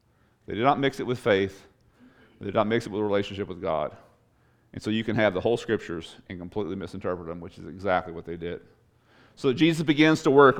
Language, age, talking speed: English, 40-59, 225 wpm